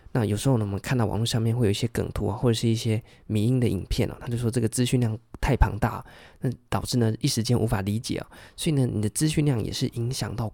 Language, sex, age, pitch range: Chinese, male, 20-39, 105-125 Hz